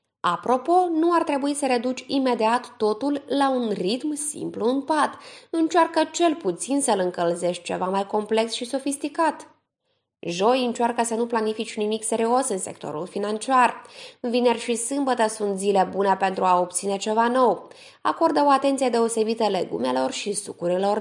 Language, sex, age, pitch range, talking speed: Romanian, female, 20-39, 215-280 Hz, 150 wpm